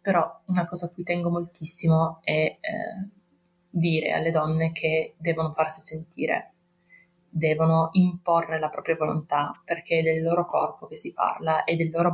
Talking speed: 160 wpm